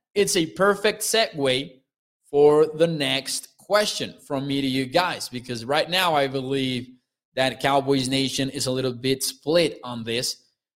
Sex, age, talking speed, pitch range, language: male, 20-39, 155 wpm, 140-185 Hz, English